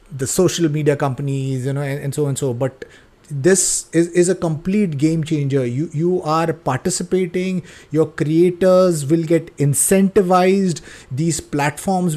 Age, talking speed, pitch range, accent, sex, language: 30-49, 150 wpm, 155-195 Hz, Indian, male, English